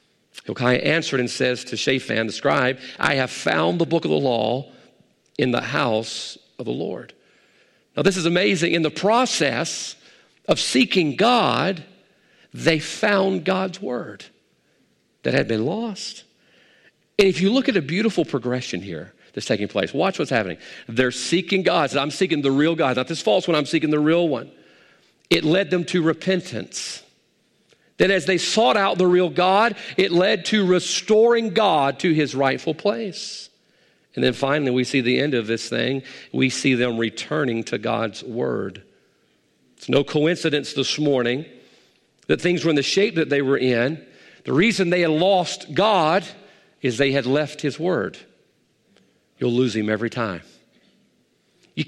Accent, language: American, English